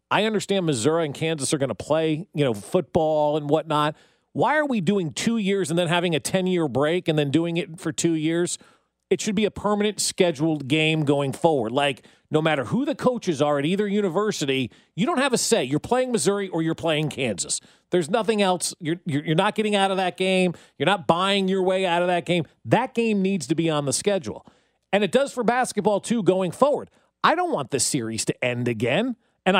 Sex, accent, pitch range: male, American, 150-205 Hz